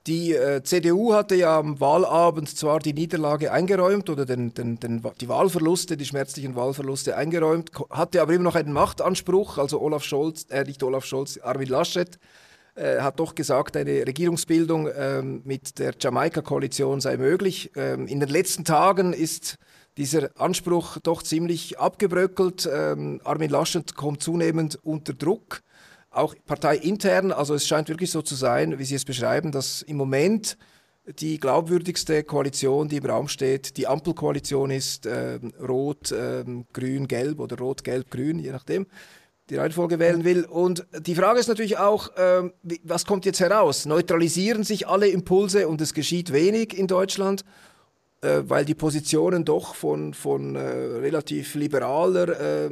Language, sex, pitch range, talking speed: German, male, 135-175 Hz, 155 wpm